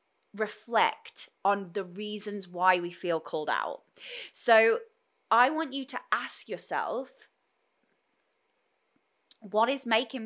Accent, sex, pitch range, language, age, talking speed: British, female, 175-260 Hz, English, 10-29, 110 wpm